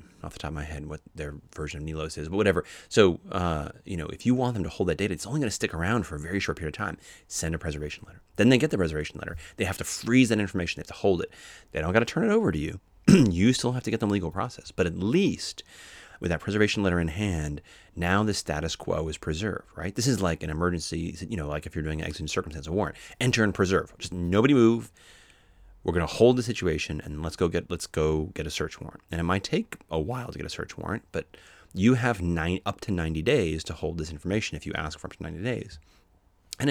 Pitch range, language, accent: 75-100 Hz, English, American